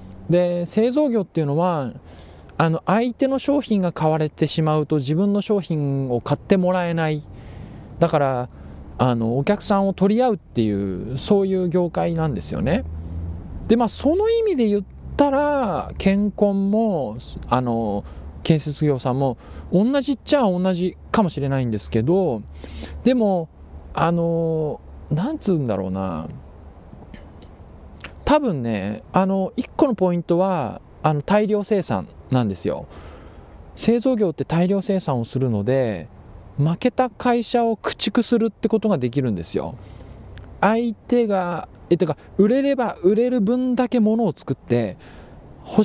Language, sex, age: Japanese, male, 20-39